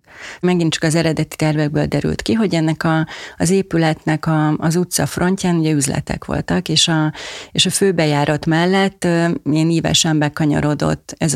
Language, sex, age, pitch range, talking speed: Hungarian, female, 30-49, 150-170 Hz, 155 wpm